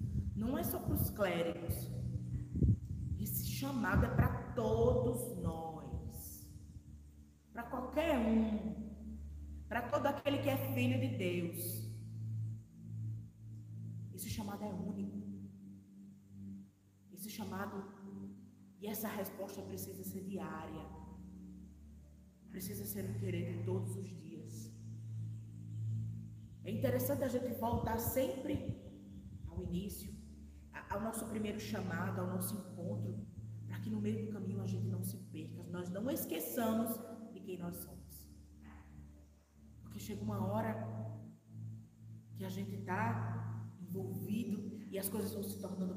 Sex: female